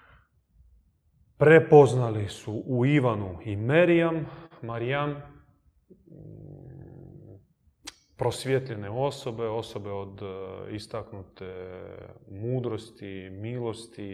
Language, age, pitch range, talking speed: Croatian, 20-39, 95-130 Hz, 60 wpm